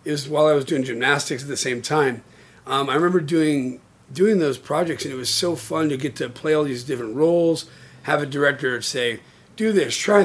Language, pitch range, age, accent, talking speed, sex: English, 130-170 Hz, 40-59, American, 215 wpm, male